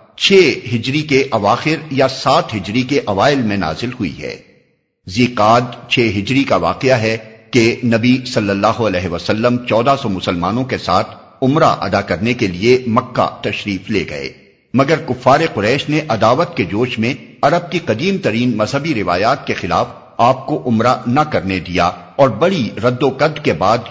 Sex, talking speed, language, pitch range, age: male, 170 wpm, Urdu, 105-145 Hz, 50-69